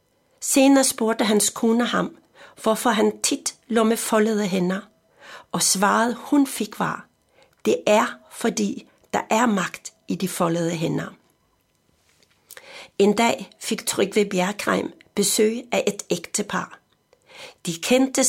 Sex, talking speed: female, 125 wpm